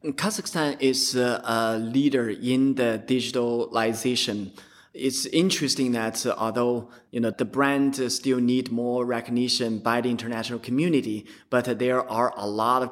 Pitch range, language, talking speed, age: 115-135 Hz, English, 135 wpm, 20-39